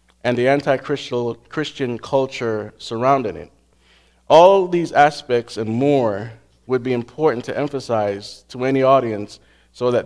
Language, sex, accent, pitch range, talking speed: English, male, American, 100-130 Hz, 130 wpm